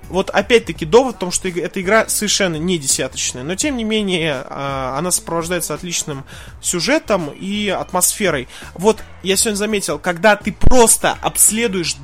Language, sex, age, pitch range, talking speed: Russian, male, 20-39, 160-210 Hz, 145 wpm